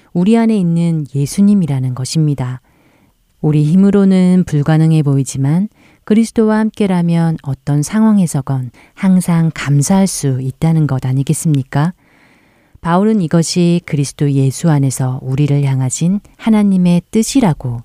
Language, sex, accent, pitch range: Korean, female, native, 140-180 Hz